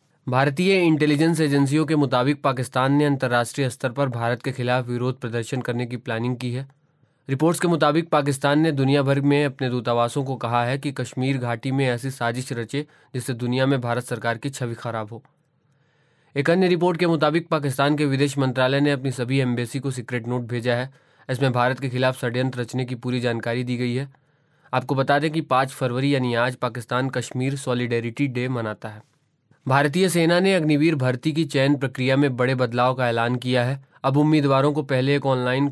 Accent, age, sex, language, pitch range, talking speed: native, 20-39, male, Hindi, 125-145 Hz, 190 wpm